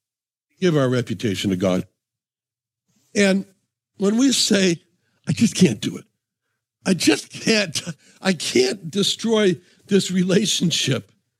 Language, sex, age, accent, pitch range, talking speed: English, male, 60-79, American, 125-185 Hz, 115 wpm